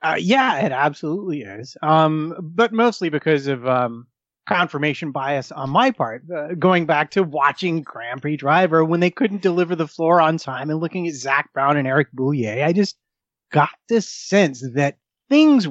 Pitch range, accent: 135-180 Hz, American